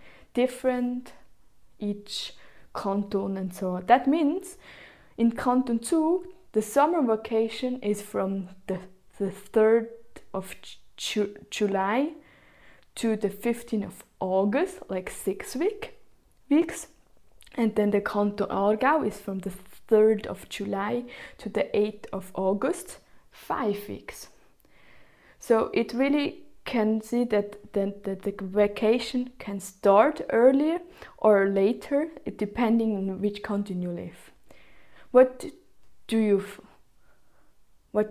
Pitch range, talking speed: 195-250 Hz, 110 wpm